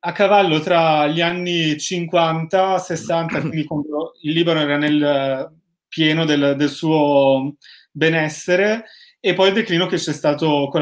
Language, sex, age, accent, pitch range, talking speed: Italian, male, 30-49, native, 145-175 Hz, 130 wpm